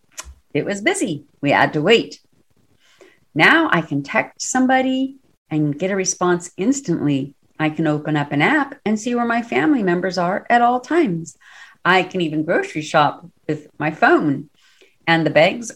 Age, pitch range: 50-69, 165-265 Hz